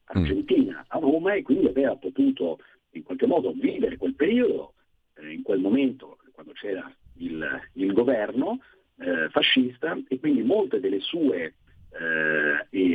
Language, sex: Italian, male